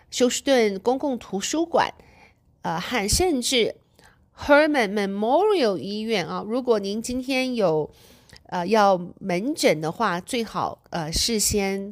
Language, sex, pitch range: Chinese, female, 180-250 Hz